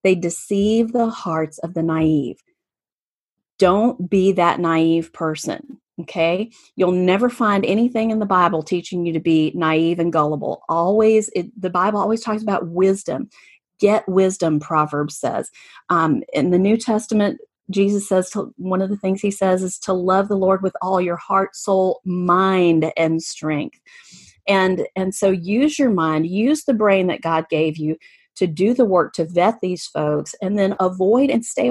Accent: American